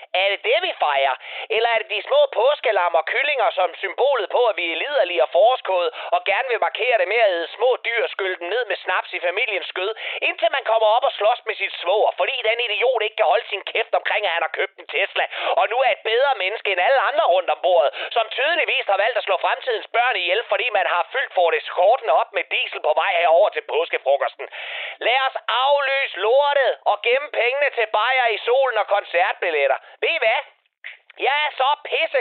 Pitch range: 215-295 Hz